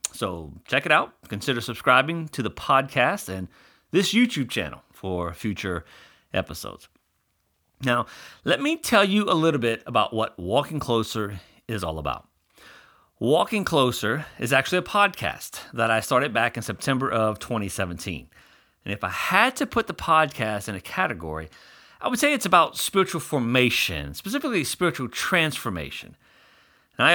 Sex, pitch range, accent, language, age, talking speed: male, 105-160 Hz, American, English, 40-59, 150 wpm